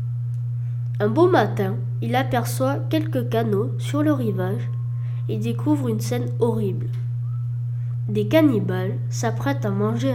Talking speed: 120 wpm